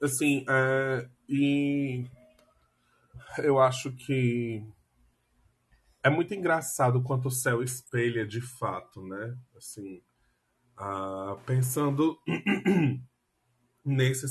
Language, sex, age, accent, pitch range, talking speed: Portuguese, male, 20-39, Brazilian, 120-130 Hz, 75 wpm